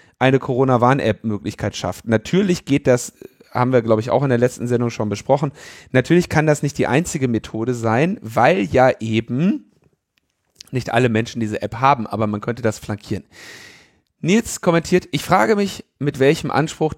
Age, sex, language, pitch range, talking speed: 40-59, male, German, 115-150 Hz, 175 wpm